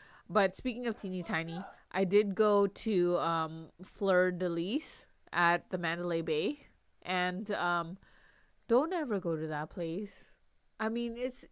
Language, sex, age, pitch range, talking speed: English, female, 20-39, 175-250 Hz, 145 wpm